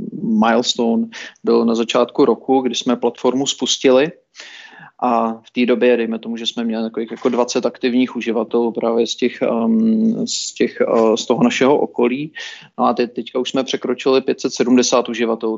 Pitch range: 120-135 Hz